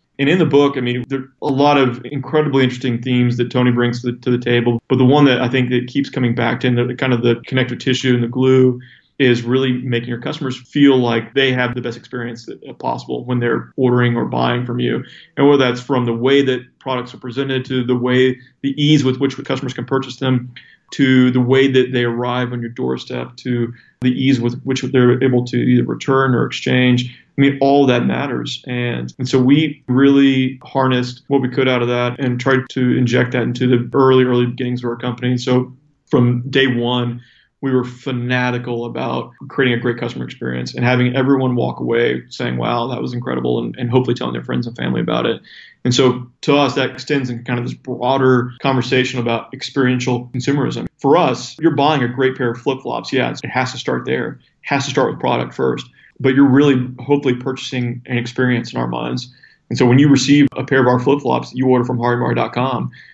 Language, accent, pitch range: English, American, 120-135 Hz